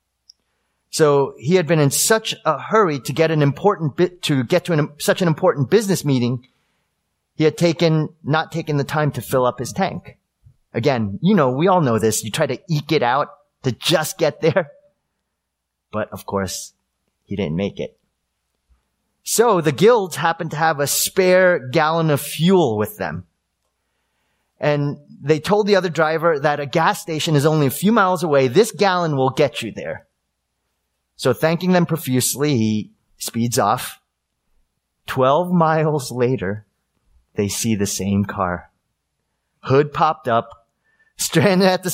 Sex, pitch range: male, 115-165 Hz